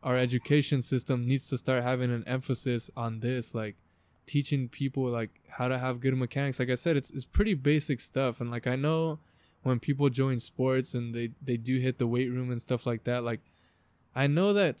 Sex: male